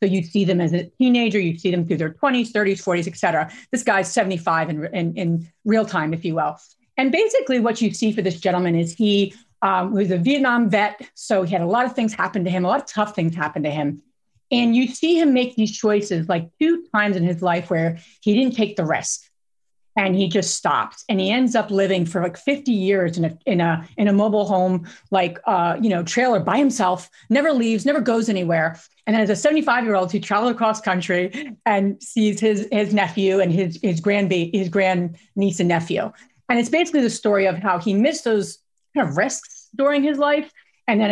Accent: American